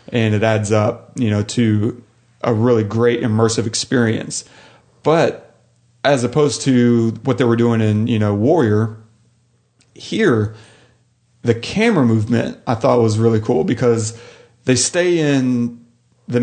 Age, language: 40-59, English